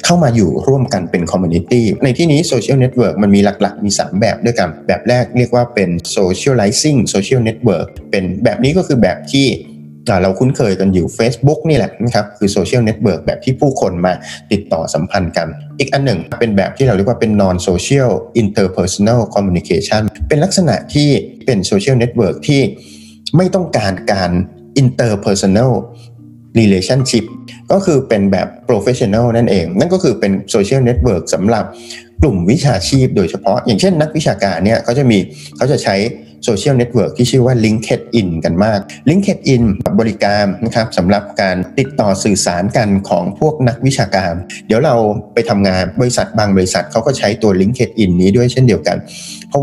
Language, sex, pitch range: Thai, male, 95-130 Hz